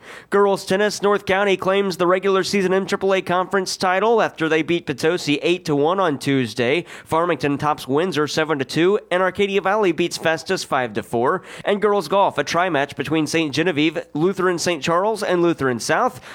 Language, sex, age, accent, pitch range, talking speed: English, male, 30-49, American, 145-185 Hz, 165 wpm